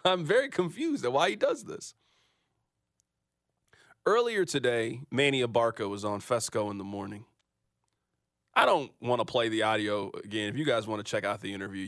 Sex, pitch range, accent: male, 100-170 Hz, American